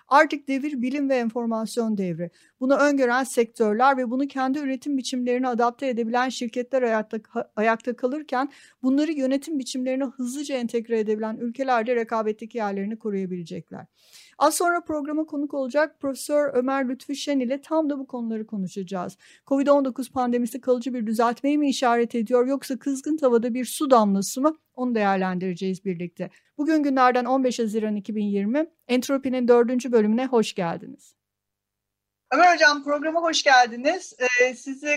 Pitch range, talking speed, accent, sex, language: 220-270 Hz, 135 wpm, native, female, Turkish